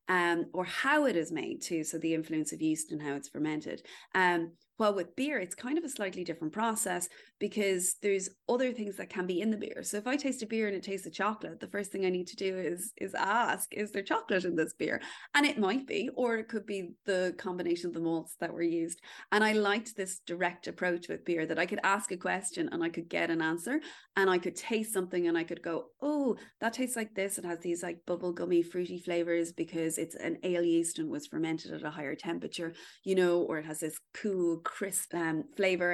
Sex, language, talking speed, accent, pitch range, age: female, English, 240 wpm, Irish, 165-205 Hz, 30-49